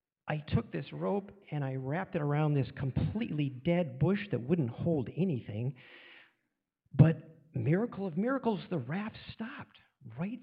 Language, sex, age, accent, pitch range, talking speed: English, male, 50-69, American, 125-175 Hz, 145 wpm